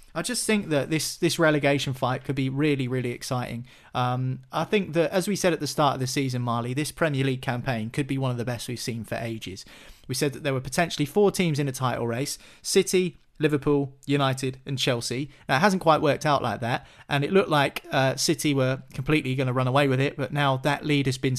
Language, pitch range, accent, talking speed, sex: English, 135-165 Hz, British, 240 wpm, male